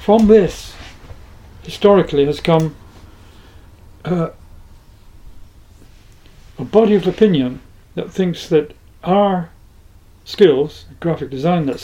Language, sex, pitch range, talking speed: English, male, 100-170 Hz, 90 wpm